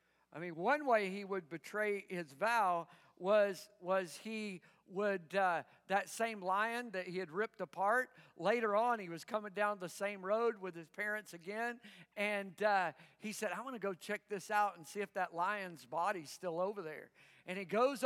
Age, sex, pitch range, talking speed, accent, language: 50-69, male, 190-245 Hz, 195 wpm, American, English